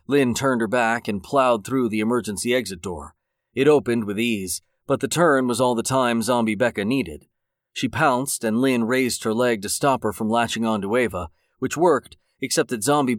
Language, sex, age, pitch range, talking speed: English, male, 30-49, 110-135 Hz, 200 wpm